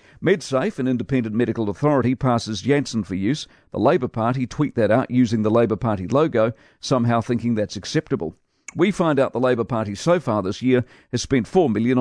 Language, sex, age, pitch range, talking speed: English, male, 50-69, 115-140 Hz, 190 wpm